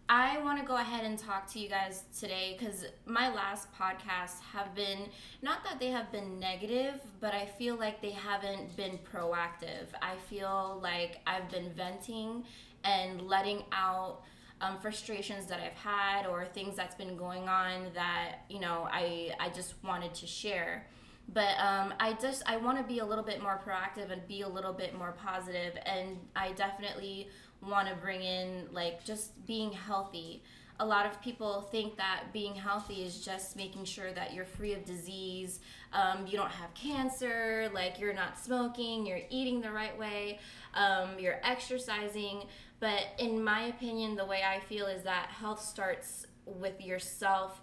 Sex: female